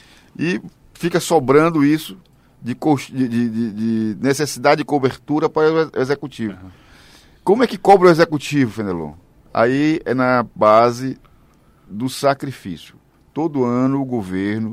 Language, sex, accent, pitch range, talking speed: Portuguese, male, Brazilian, 115-160 Hz, 125 wpm